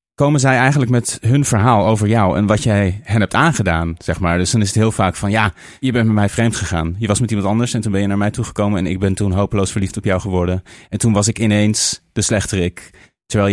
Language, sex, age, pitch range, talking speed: Dutch, male, 30-49, 100-125 Hz, 260 wpm